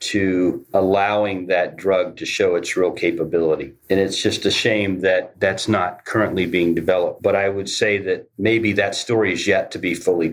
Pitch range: 90-110 Hz